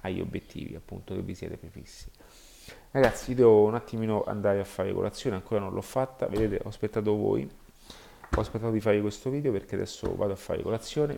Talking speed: 185 wpm